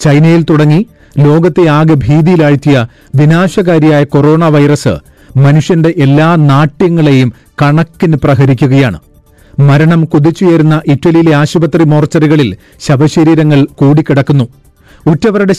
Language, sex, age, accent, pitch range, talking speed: Malayalam, male, 40-59, native, 140-165 Hz, 80 wpm